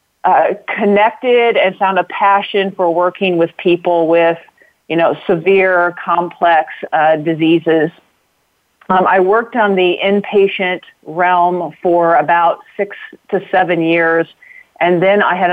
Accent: American